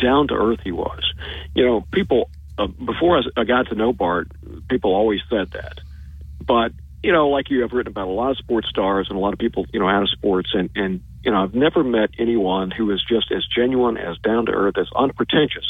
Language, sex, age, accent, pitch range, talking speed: English, male, 50-69, American, 100-130 Hz, 235 wpm